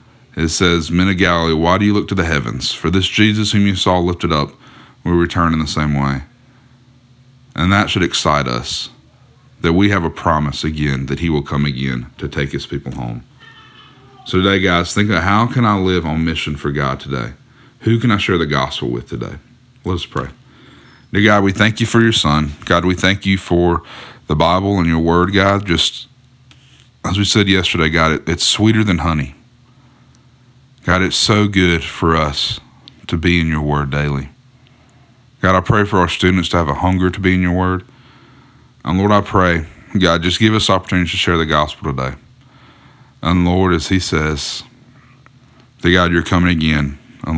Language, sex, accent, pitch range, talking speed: English, male, American, 80-115 Hz, 195 wpm